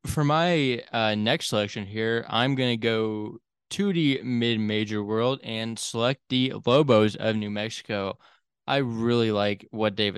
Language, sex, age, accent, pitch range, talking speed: English, male, 20-39, American, 105-125 Hz, 155 wpm